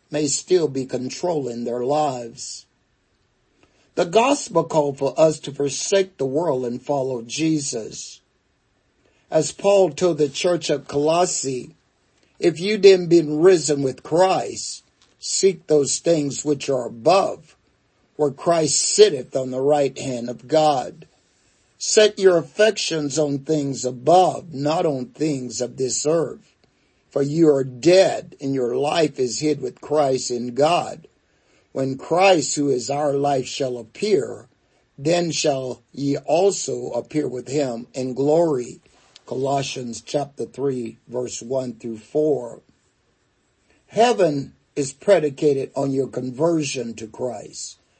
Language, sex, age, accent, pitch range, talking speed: English, male, 50-69, American, 125-160 Hz, 130 wpm